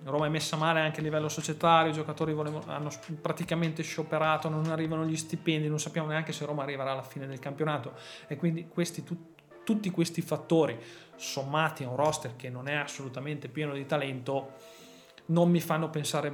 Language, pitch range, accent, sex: Italian, 140-165 Hz, native, male